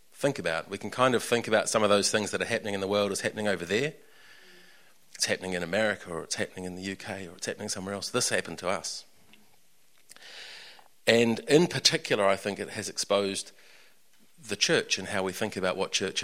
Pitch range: 100-130 Hz